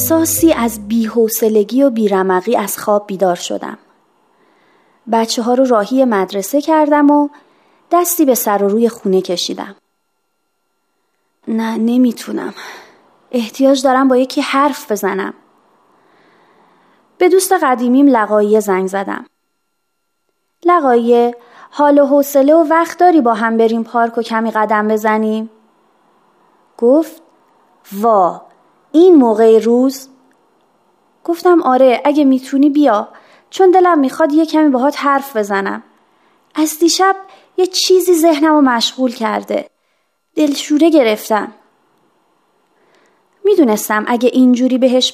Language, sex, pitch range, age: Persian, female, 225-315 Hz, 30-49